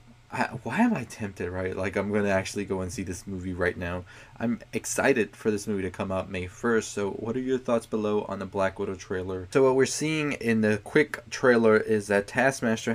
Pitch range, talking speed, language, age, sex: 95-115 Hz, 225 wpm, English, 20-39, male